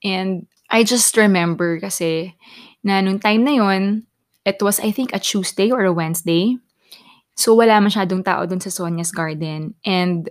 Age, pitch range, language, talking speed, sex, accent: 20-39, 180-220 Hz, Filipino, 165 wpm, female, native